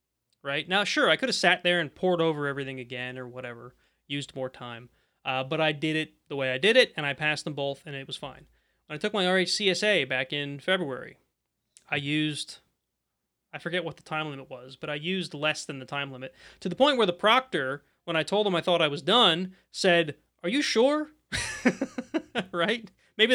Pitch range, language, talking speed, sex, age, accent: 135-185 Hz, English, 215 wpm, male, 30-49, American